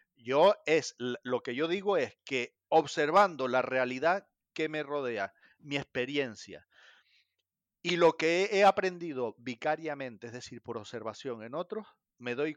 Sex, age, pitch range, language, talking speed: male, 40-59, 120-175 Hz, Spanish, 145 wpm